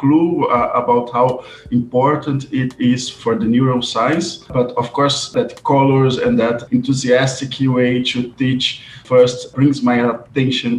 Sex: male